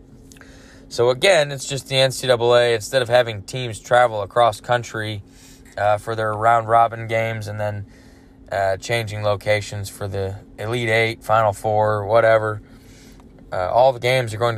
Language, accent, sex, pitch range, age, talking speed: English, American, male, 105-130 Hz, 20-39, 150 wpm